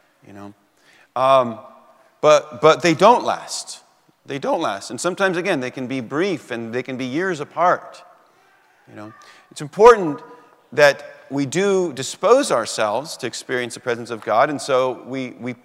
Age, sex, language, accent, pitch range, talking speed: 40-59, male, English, American, 120-180 Hz, 165 wpm